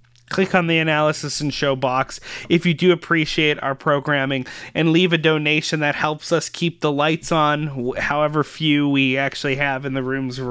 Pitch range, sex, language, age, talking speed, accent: 140-165 Hz, male, English, 30-49, 190 wpm, American